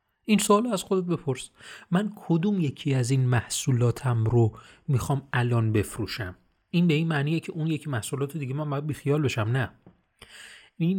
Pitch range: 115-155 Hz